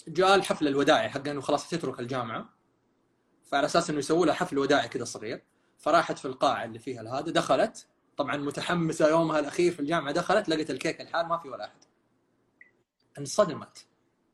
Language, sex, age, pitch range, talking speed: Arabic, male, 20-39, 150-210 Hz, 165 wpm